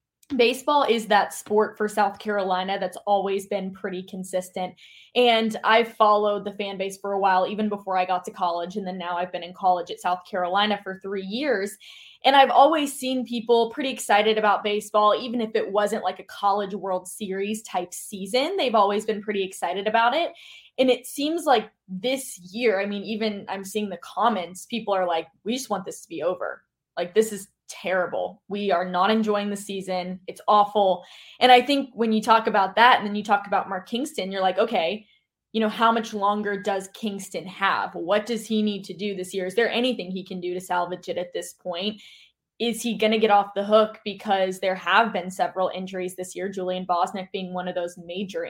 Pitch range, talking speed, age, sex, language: 185-220 Hz, 215 wpm, 10-29, female, English